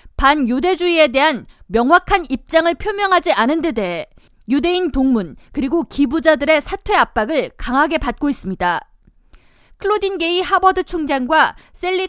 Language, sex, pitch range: Korean, female, 250-355 Hz